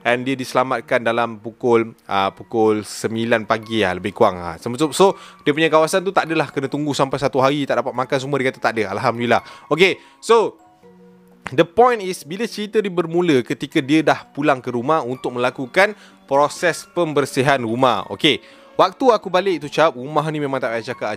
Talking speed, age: 195 wpm, 20-39